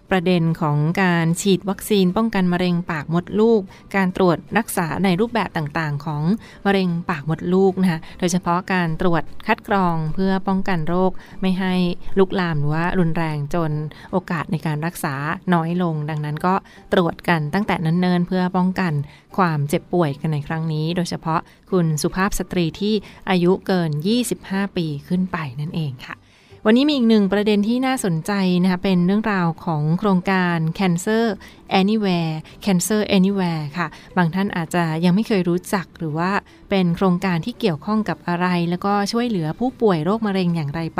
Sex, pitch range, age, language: female, 165-195 Hz, 20-39, Thai